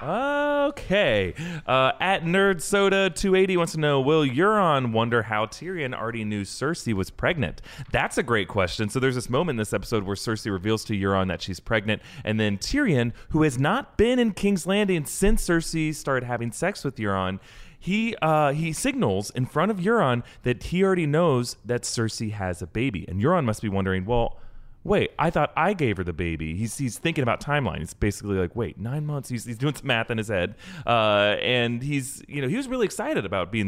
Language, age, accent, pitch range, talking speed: English, 30-49, American, 95-145 Hz, 205 wpm